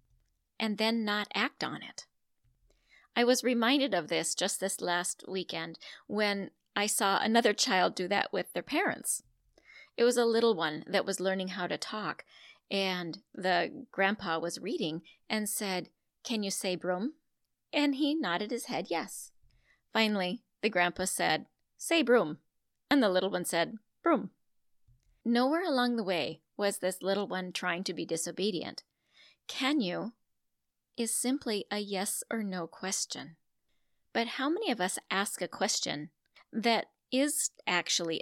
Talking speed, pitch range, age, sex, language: 150 wpm, 180-240 Hz, 40-59, female, English